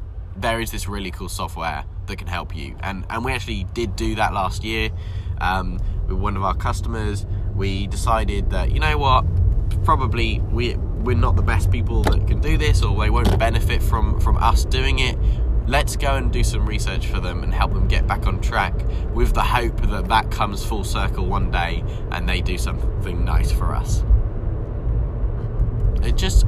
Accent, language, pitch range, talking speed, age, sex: British, English, 90-100 Hz, 195 wpm, 10-29, male